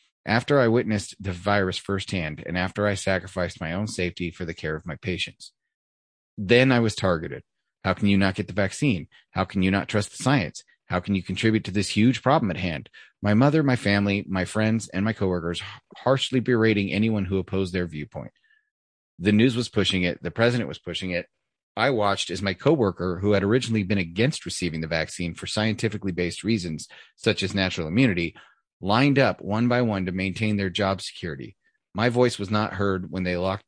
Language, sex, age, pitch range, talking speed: English, male, 30-49, 90-110 Hz, 200 wpm